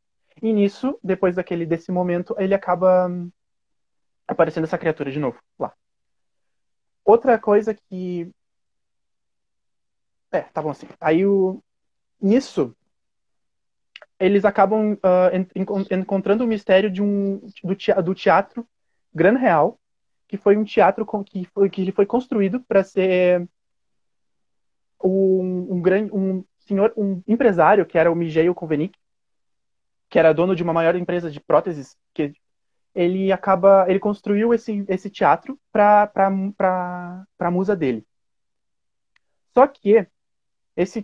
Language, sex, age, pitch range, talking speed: Portuguese, male, 20-39, 175-200 Hz, 135 wpm